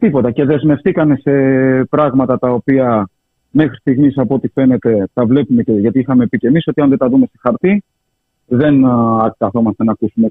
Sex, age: male, 30-49